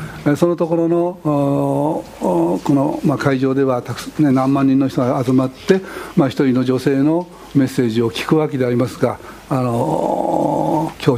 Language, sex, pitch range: Japanese, male, 135-180 Hz